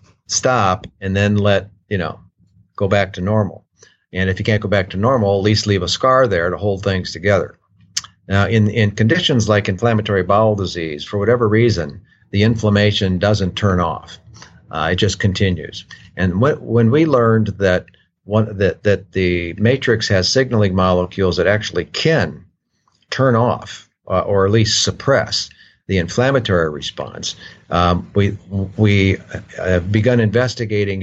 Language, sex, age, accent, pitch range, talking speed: English, male, 50-69, American, 95-110 Hz, 155 wpm